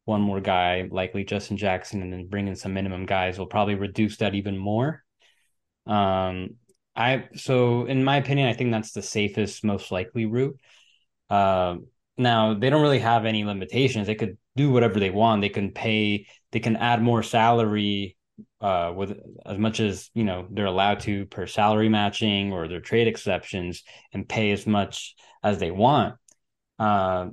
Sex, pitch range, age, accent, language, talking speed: male, 100-120 Hz, 20-39, American, English, 180 wpm